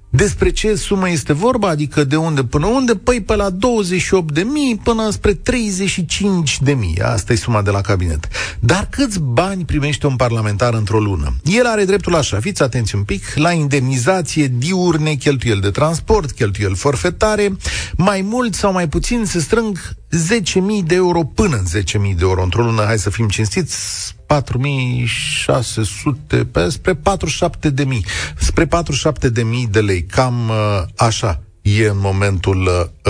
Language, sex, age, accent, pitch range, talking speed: Romanian, male, 40-59, native, 110-185 Hz, 150 wpm